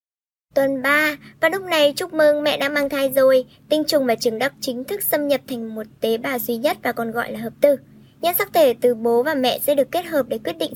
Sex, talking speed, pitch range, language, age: male, 260 wpm, 250-300 Hz, Vietnamese, 10-29